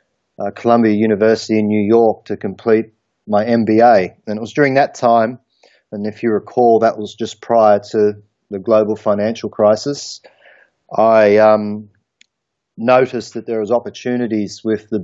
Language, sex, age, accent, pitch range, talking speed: English, male, 30-49, Australian, 105-115 Hz, 150 wpm